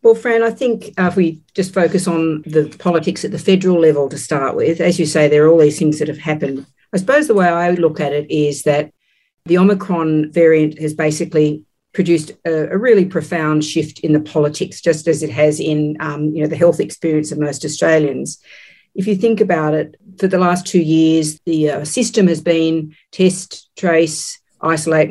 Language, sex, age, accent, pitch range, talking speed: English, female, 50-69, Australian, 155-180 Hz, 195 wpm